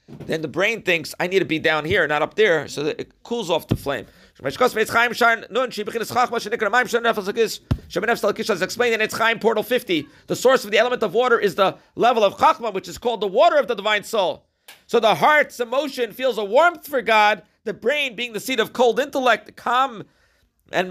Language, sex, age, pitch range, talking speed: English, male, 50-69, 195-250 Hz, 200 wpm